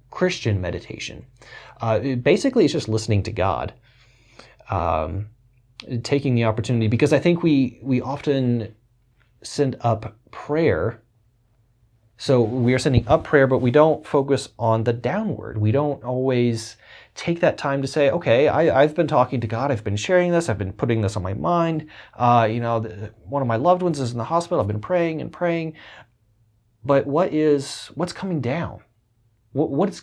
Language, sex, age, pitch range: English, male, 30-49, 105-135 Hz